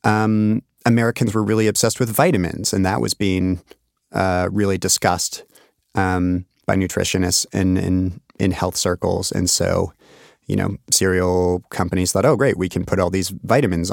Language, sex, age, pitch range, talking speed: English, male, 30-49, 90-105 Hz, 160 wpm